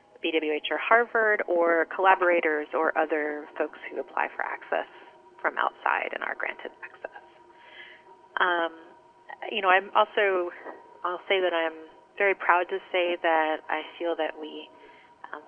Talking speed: 140 wpm